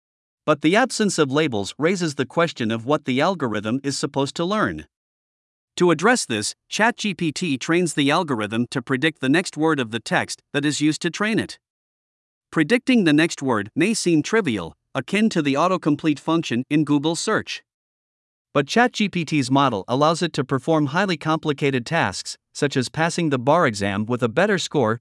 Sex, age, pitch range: male, 50-69, 135-175 Hz